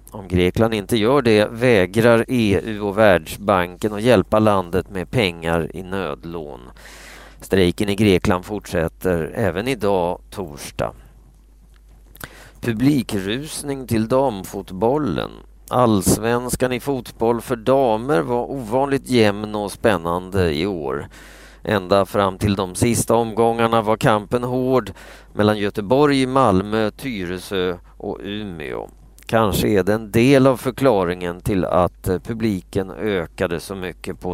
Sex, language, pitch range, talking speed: male, Swedish, 95-120 Hz, 115 wpm